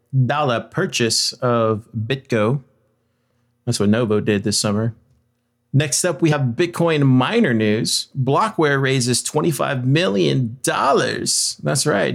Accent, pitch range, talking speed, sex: American, 115-145 Hz, 120 wpm, male